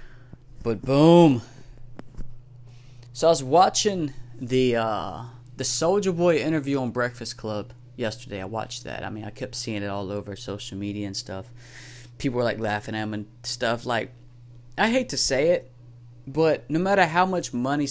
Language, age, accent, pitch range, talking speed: English, 20-39, American, 115-140 Hz, 170 wpm